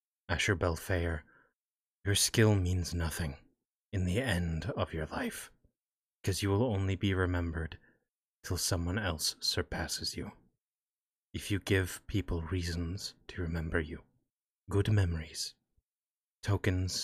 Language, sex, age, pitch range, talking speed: English, male, 30-49, 85-95 Hz, 120 wpm